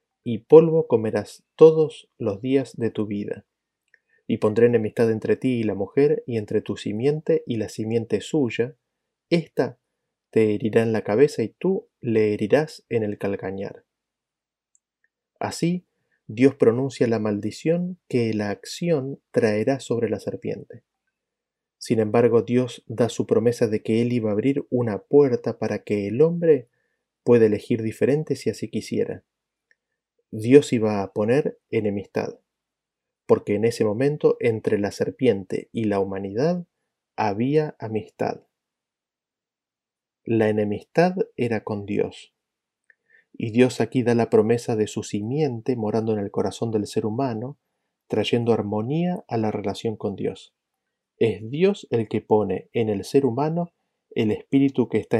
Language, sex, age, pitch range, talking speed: Spanish, male, 30-49, 110-140 Hz, 145 wpm